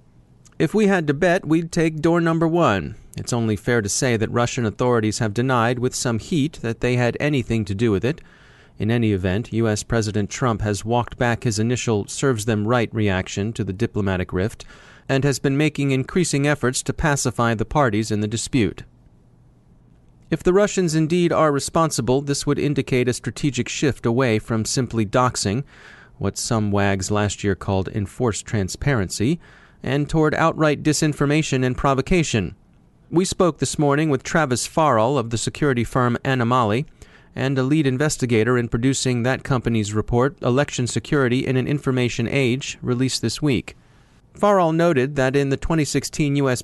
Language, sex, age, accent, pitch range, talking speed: English, male, 30-49, American, 110-140 Hz, 165 wpm